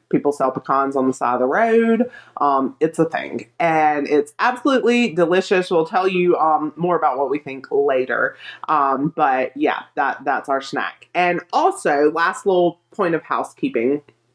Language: English